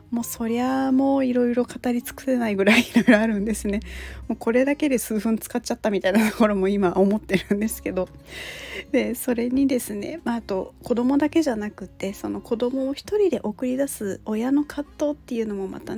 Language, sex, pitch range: Japanese, female, 210-255 Hz